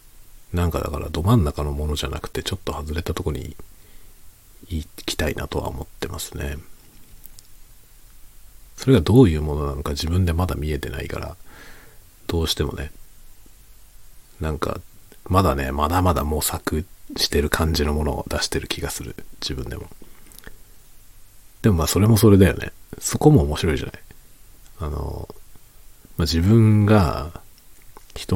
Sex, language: male, Japanese